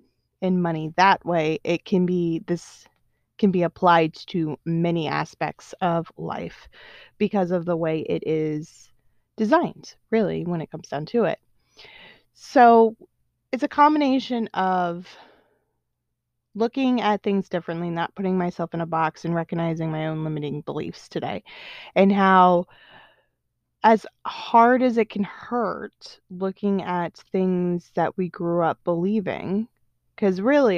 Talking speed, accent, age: 135 wpm, American, 20-39